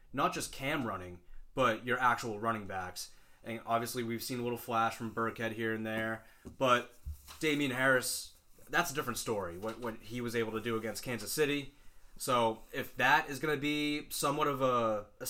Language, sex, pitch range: English, male, 110-125 Hz